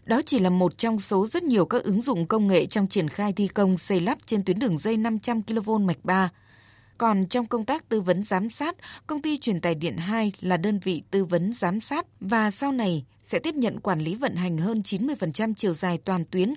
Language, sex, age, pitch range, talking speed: Vietnamese, female, 20-39, 180-230 Hz, 230 wpm